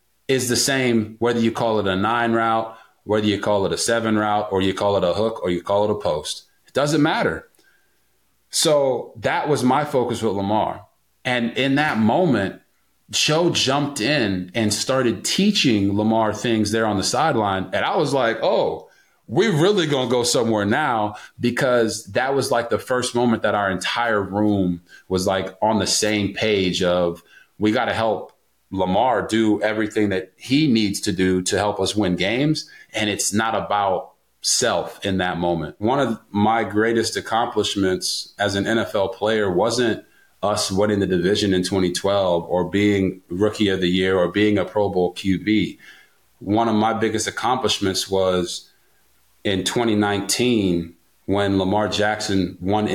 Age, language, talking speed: 30-49, English, 170 wpm